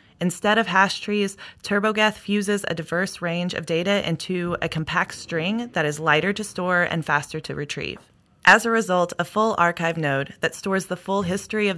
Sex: female